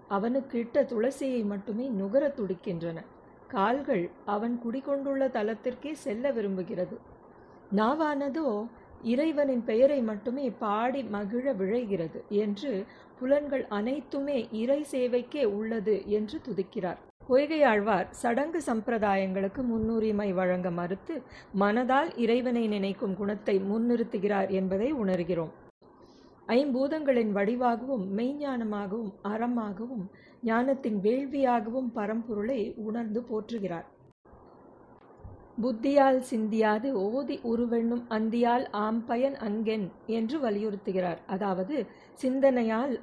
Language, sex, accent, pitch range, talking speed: Tamil, female, native, 210-265 Hz, 80 wpm